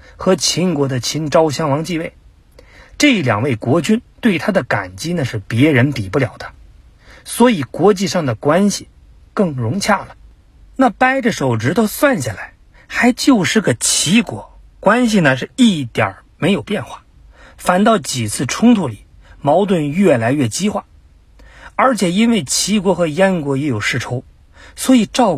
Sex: male